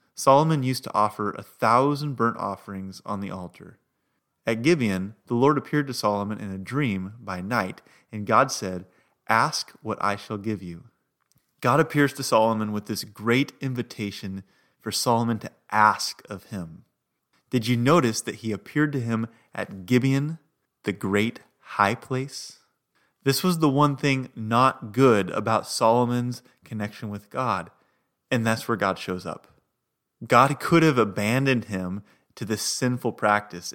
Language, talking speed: English, 155 wpm